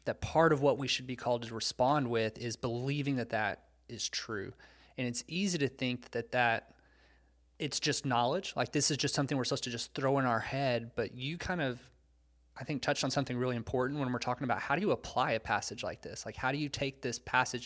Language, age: English, 20-39